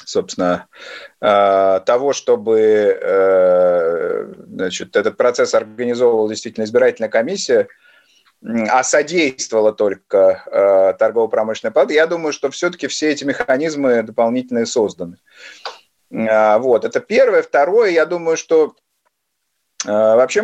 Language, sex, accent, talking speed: Russian, male, native, 95 wpm